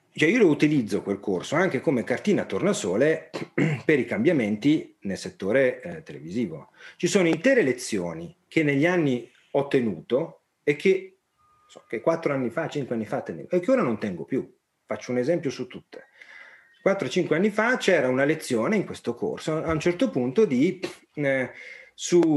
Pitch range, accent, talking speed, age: 140-220 Hz, native, 165 wpm, 40-59